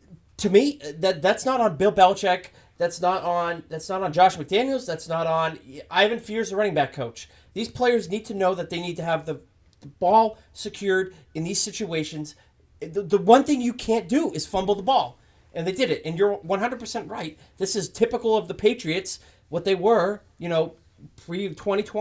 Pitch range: 145-200 Hz